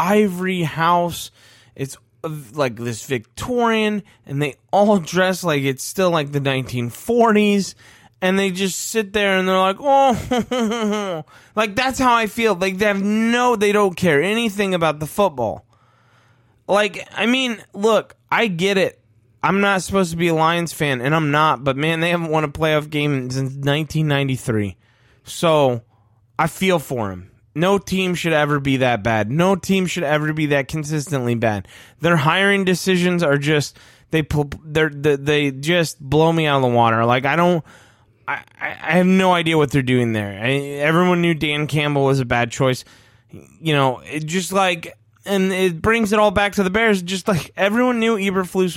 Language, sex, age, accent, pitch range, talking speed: English, male, 20-39, American, 135-195 Hz, 175 wpm